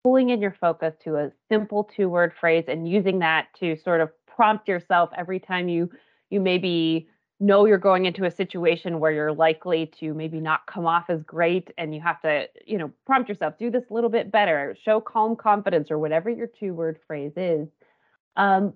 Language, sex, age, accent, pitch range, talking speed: English, female, 30-49, American, 170-215 Hz, 200 wpm